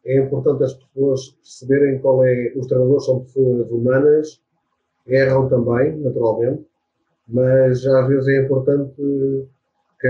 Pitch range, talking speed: 130-150 Hz, 125 wpm